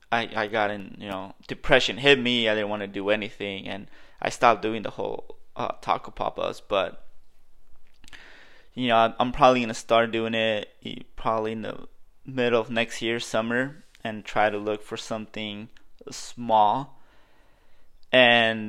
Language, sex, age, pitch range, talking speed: English, male, 20-39, 105-120 Hz, 155 wpm